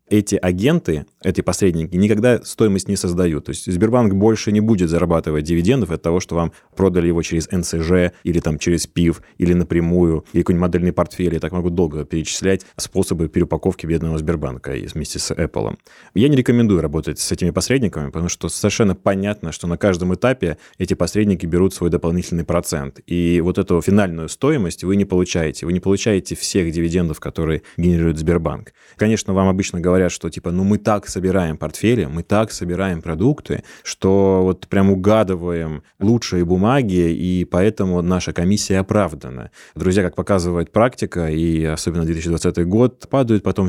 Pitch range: 85-95 Hz